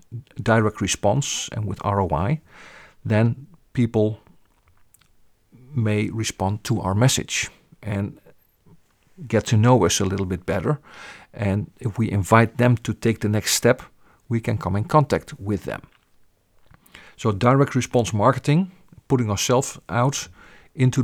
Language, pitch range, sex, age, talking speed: English, 100-125 Hz, male, 50-69, 130 wpm